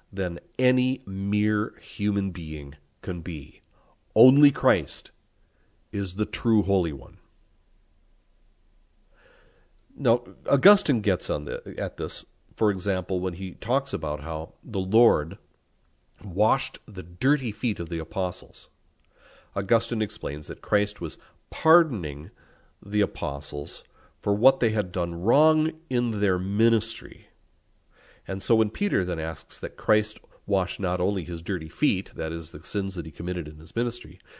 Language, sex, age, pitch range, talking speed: English, male, 50-69, 85-115 Hz, 135 wpm